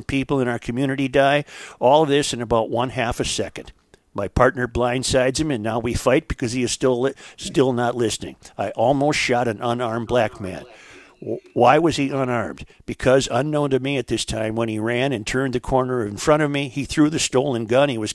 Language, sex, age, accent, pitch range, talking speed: English, male, 50-69, American, 120-135 Hz, 220 wpm